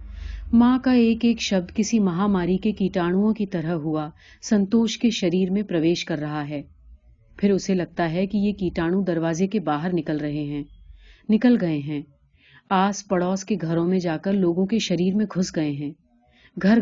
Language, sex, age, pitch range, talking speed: Urdu, female, 30-49, 155-205 Hz, 180 wpm